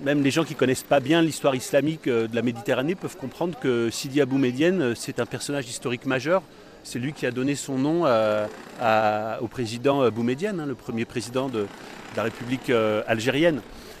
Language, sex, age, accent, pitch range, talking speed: French, male, 40-59, French, 125-160 Hz, 195 wpm